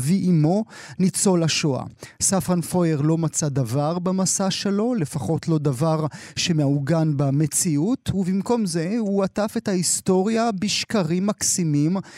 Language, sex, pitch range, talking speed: Hebrew, male, 155-195 Hz, 115 wpm